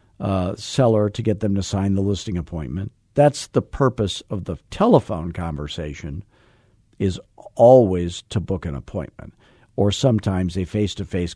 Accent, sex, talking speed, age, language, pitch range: American, male, 145 wpm, 50-69, English, 90-115 Hz